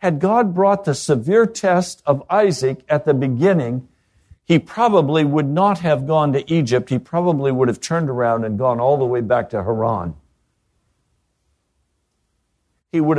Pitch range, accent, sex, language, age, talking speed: 130-195 Hz, American, male, English, 60-79, 160 wpm